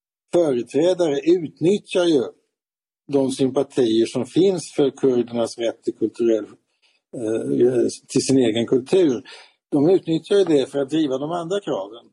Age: 60-79